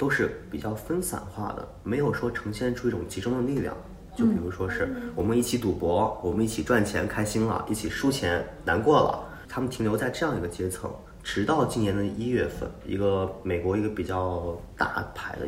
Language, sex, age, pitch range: Chinese, male, 20-39, 95-125 Hz